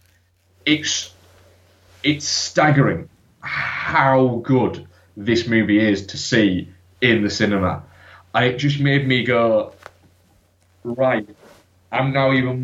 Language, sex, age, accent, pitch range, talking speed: English, male, 20-39, British, 90-125 Hz, 105 wpm